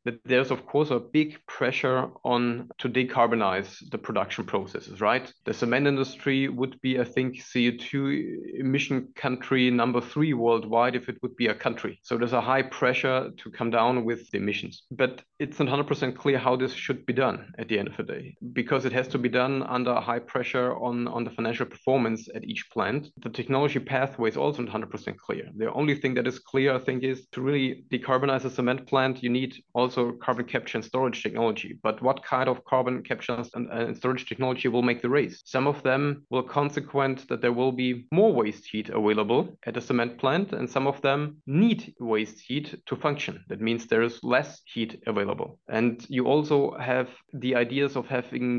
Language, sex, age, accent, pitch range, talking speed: English, male, 30-49, German, 120-135 Hz, 200 wpm